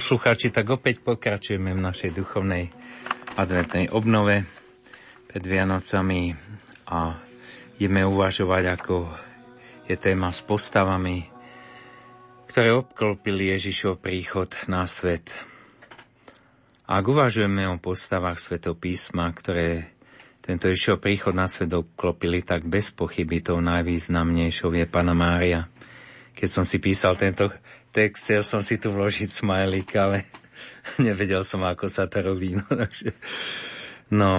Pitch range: 90-105 Hz